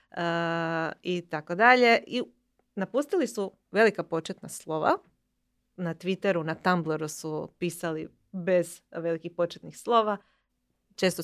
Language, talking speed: Croatian, 110 wpm